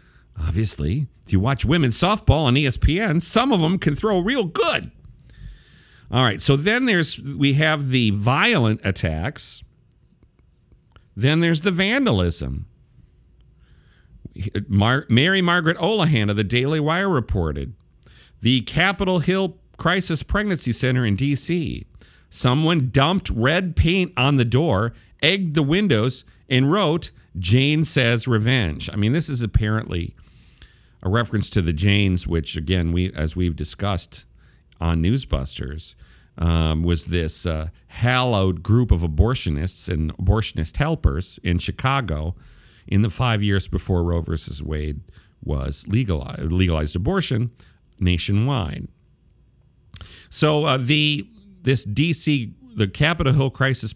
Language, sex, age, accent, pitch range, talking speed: English, male, 50-69, American, 90-140 Hz, 125 wpm